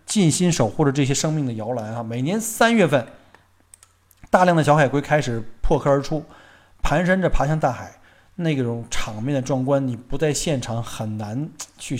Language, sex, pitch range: Chinese, male, 115-155 Hz